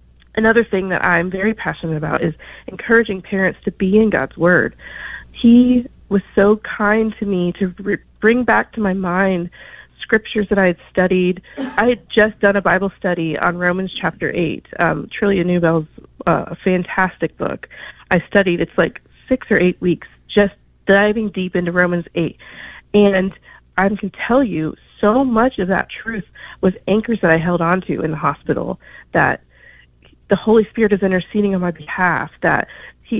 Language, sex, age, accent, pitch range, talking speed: English, female, 30-49, American, 180-210 Hz, 170 wpm